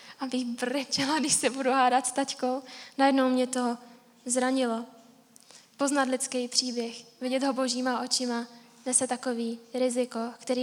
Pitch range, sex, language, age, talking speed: 235-255 Hz, female, Czech, 10-29, 130 wpm